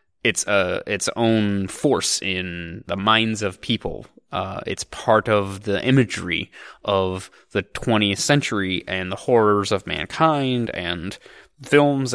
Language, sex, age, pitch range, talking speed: English, male, 20-39, 100-120 Hz, 140 wpm